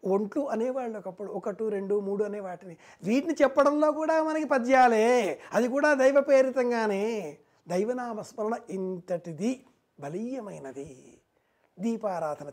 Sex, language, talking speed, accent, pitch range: male, Telugu, 95 wpm, native, 205-255 Hz